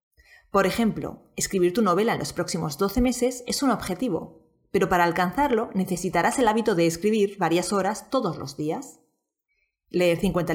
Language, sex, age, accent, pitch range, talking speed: Spanish, female, 30-49, Spanish, 175-230 Hz, 160 wpm